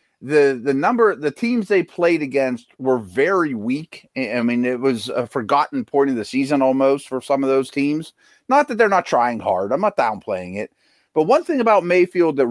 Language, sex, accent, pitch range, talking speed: English, male, American, 130-180 Hz, 210 wpm